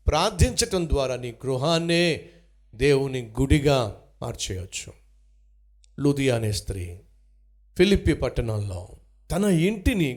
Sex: male